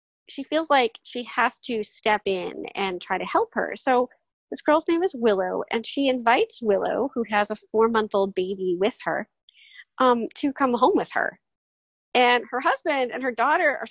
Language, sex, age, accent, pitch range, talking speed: English, female, 30-49, American, 200-300 Hz, 195 wpm